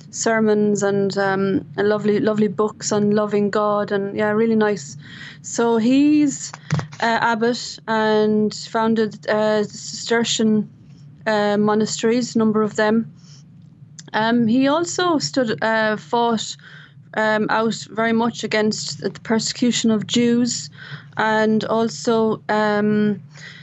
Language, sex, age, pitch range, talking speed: English, female, 20-39, 195-225 Hz, 115 wpm